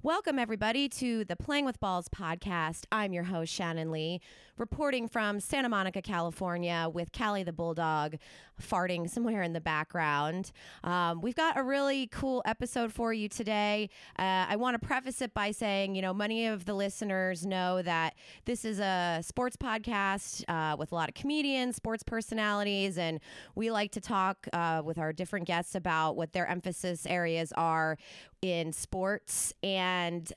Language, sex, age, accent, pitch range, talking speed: English, female, 20-39, American, 170-210 Hz, 165 wpm